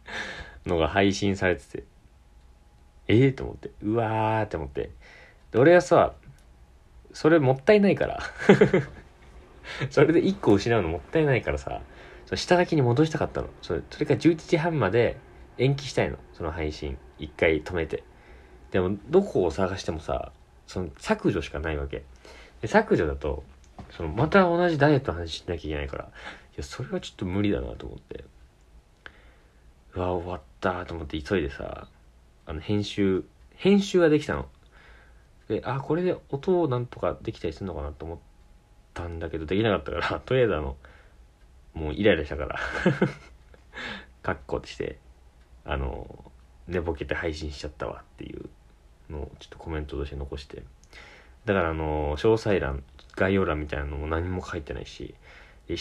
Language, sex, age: Japanese, male, 40-59